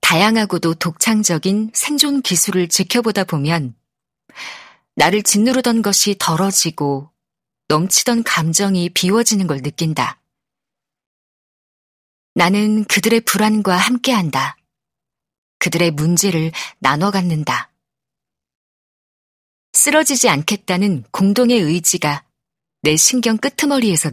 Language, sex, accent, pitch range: Korean, female, native, 155-215 Hz